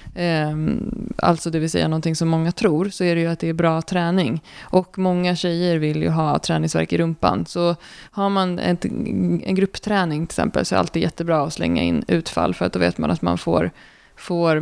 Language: Swedish